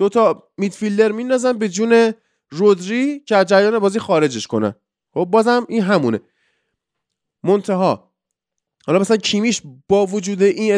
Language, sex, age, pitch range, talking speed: Persian, male, 20-39, 160-230 Hz, 120 wpm